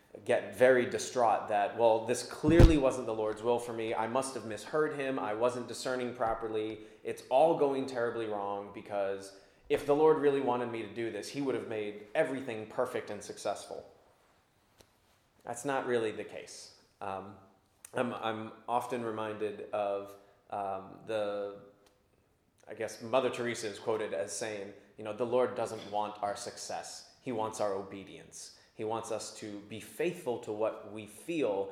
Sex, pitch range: male, 105-130 Hz